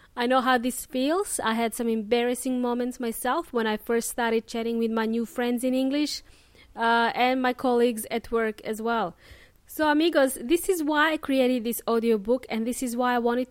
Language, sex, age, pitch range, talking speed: English, female, 20-39, 230-285 Hz, 200 wpm